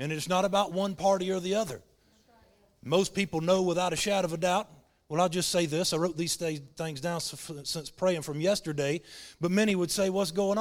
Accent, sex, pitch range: American, male, 170-215 Hz